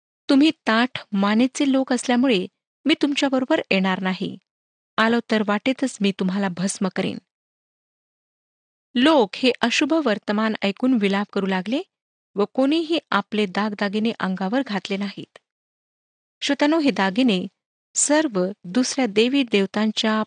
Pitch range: 200-270 Hz